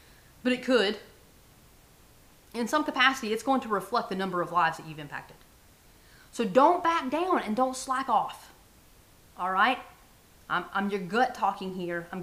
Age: 30-49